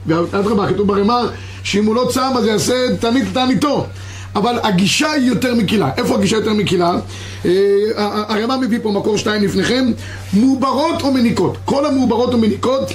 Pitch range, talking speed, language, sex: 195-265 Hz, 155 wpm, Hebrew, male